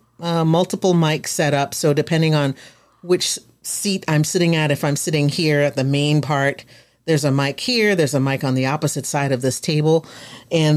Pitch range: 135-160 Hz